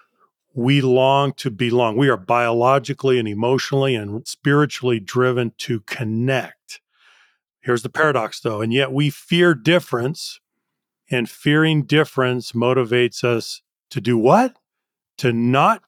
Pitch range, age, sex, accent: 125-165 Hz, 40-59, male, American